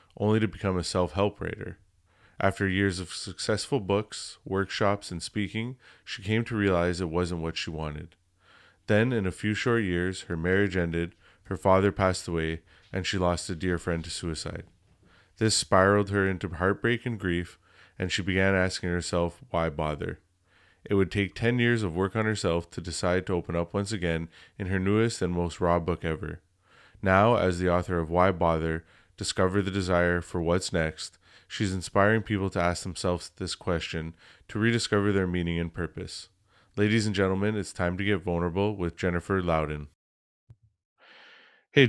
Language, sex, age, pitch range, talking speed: English, male, 20-39, 90-105 Hz, 175 wpm